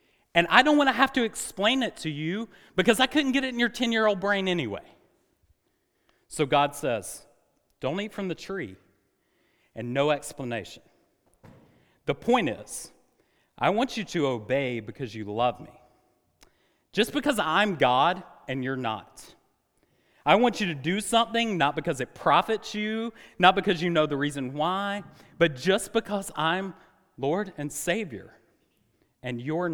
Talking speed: 155 wpm